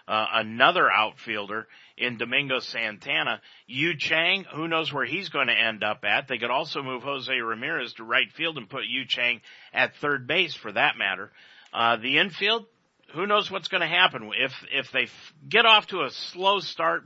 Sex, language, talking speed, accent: male, English, 195 wpm, American